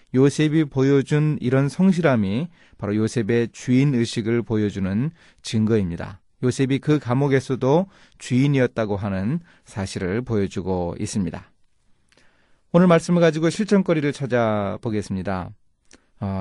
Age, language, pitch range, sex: 30-49, Korean, 100-150 Hz, male